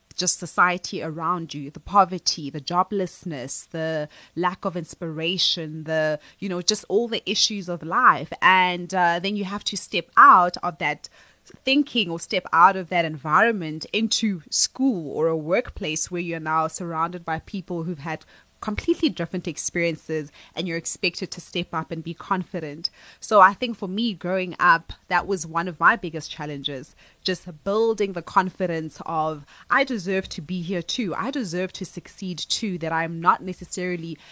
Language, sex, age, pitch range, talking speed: English, female, 20-39, 165-200 Hz, 170 wpm